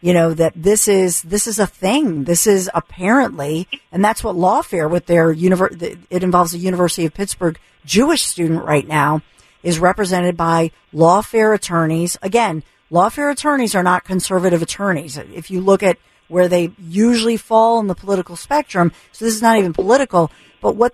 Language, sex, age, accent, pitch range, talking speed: English, female, 50-69, American, 170-215 Hz, 175 wpm